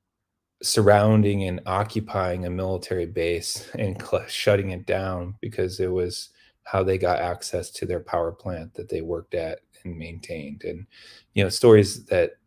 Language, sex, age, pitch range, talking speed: English, male, 20-39, 90-105 Hz, 155 wpm